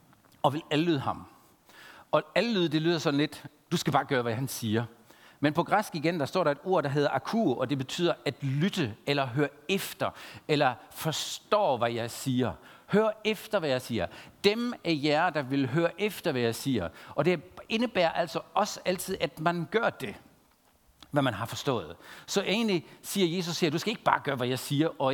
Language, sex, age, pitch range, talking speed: Danish, male, 60-79, 140-195 Hz, 205 wpm